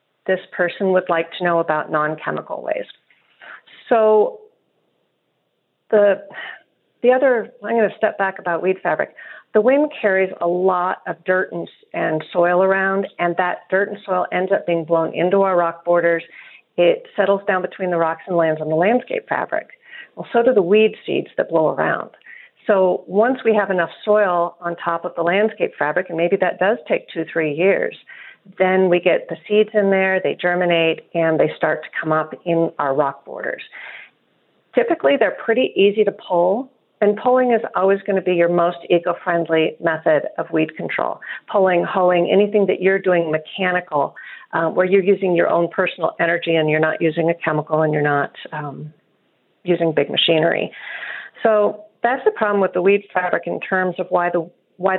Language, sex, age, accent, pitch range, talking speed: English, female, 40-59, American, 170-205 Hz, 180 wpm